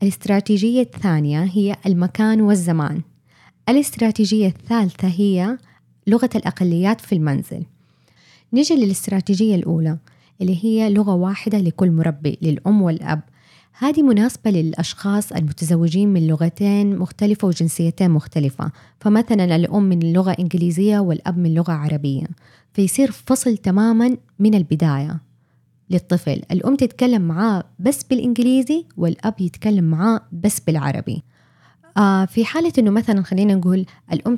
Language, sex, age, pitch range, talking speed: Arabic, female, 20-39, 170-215 Hz, 115 wpm